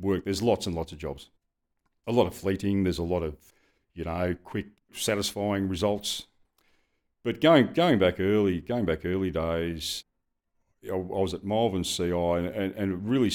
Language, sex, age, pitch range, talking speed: English, male, 50-69, 80-95 Hz, 175 wpm